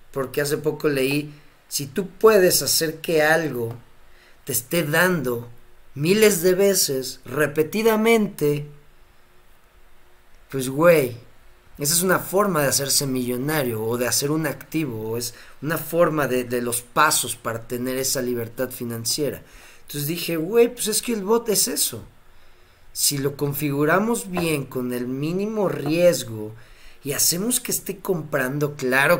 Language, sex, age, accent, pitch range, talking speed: Spanish, male, 40-59, Mexican, 120-160 Hz, 140 wpm